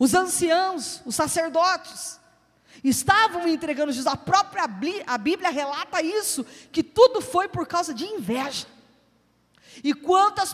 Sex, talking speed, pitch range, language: female, 130 wpm, 275-350 Hz, Portuguese